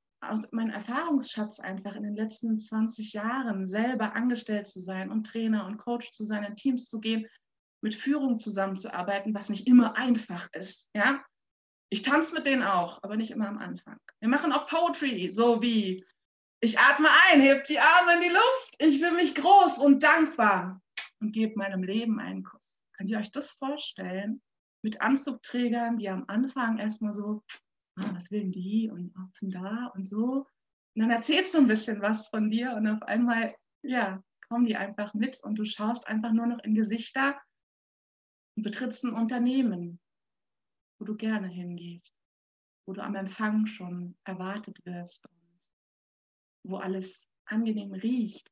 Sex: female